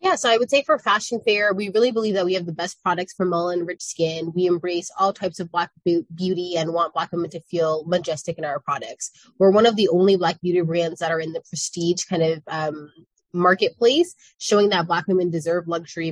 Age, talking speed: 20-39, 230 wpm